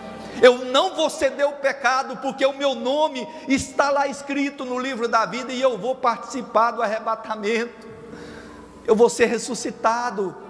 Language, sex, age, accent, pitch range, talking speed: Portuguese, male, 50-69, Brazilian, 185-255 Hz, 155 wpm